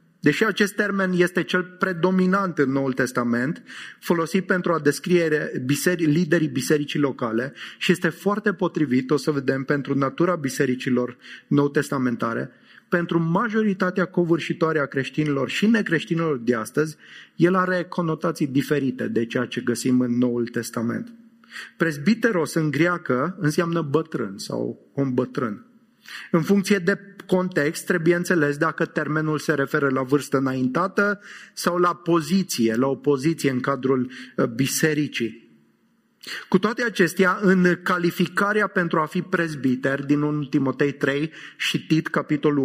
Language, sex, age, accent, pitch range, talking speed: English, male, 30-49, Romanian, 140-185 Hz, 130 wpm